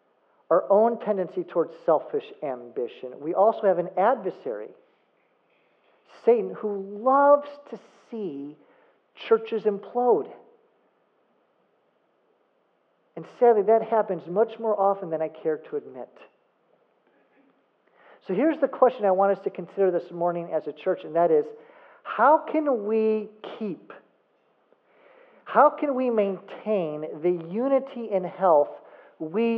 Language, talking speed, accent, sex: English, 120 wpm, American, male